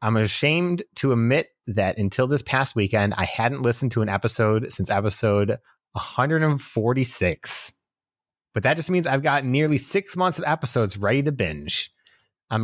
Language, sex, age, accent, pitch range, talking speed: English, male, 30-49, American, 100-130 Hz, 155 wpm